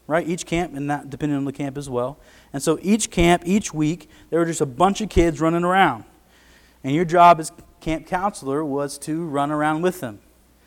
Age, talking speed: 30-49, 215 wpm